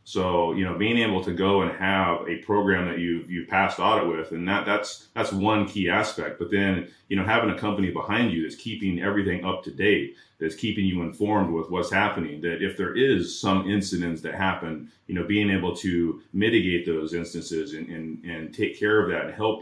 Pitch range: 85-100 Hz